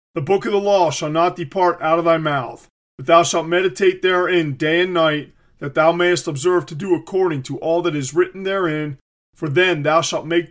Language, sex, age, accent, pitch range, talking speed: English, male, 40-59, American, 155-185 Hz, 215 wpm